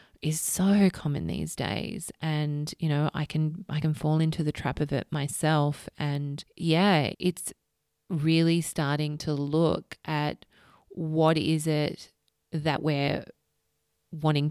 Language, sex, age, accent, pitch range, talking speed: English, female, 20-39, Australian, 150-180 Hz, 135 wpm